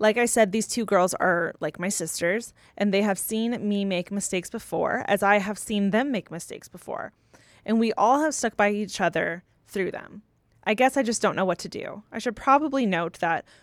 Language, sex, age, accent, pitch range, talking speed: English, female, 20-39, American, 185-225 Hz, 220 wpm